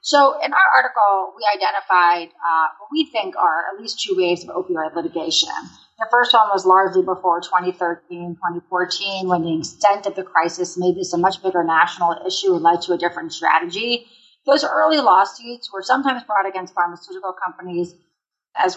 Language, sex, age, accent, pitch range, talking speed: English, female, 40-59, American, 175-225 Hz, 175 wpm